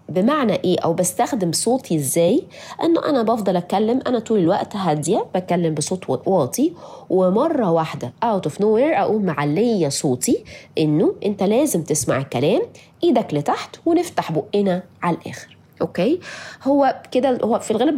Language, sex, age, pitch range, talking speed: Arabic, female, 20-39, 155-220 Hz, 145 wpm